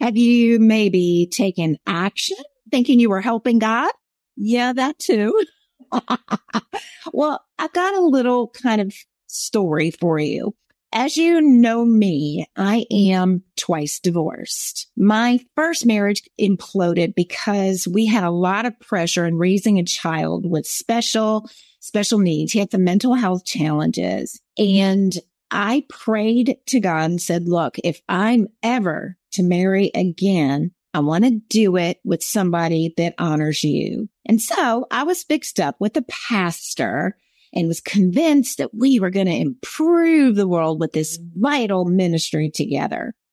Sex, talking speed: female, 145 wpm